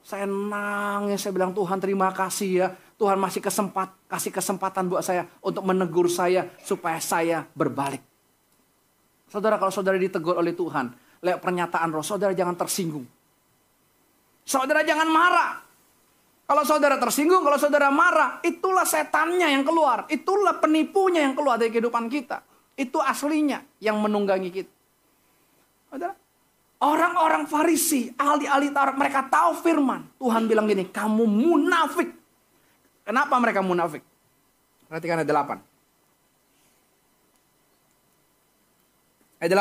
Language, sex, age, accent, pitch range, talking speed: Indonesian, male, 30-49, native, 195-325 Hz, 120 wpm